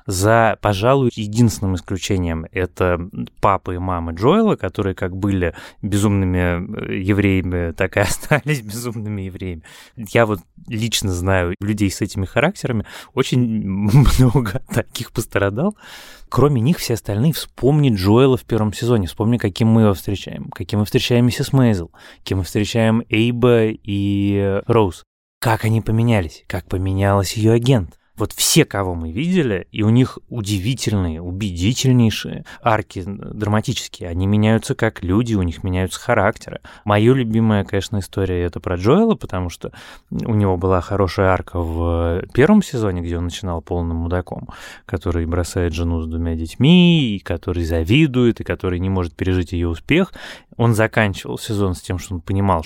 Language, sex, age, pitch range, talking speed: Russian, male, 20-39, 90-115 Hz, 150 wpm